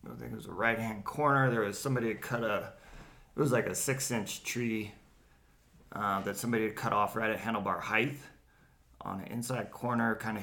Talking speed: 205 wpm